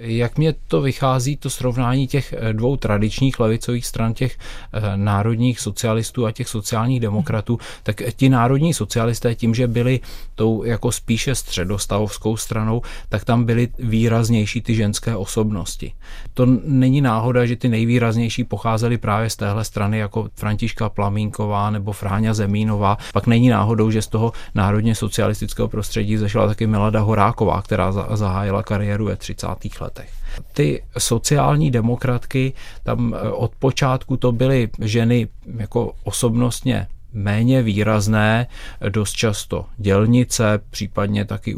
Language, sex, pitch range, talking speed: Czech, male, 105-120 Hz, 130 wpm